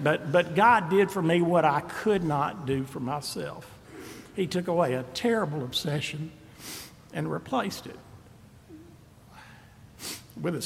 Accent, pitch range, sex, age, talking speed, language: American, 125-165 Hz, male, 60-79, 135 wpm, English